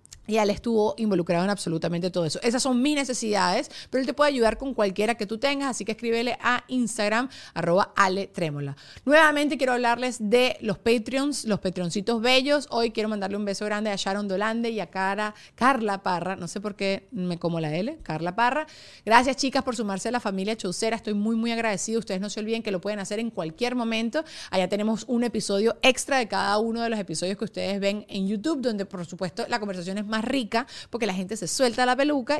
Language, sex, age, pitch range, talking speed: Spanish, female, 30-49, 195-245 Hz, 215 wpm